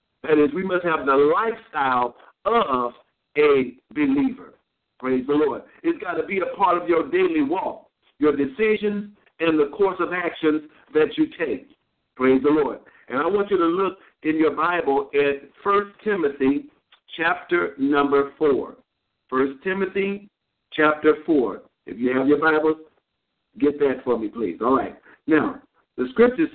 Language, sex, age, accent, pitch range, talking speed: English, male, 60-79, American, 145-230 Hz, 160 wpm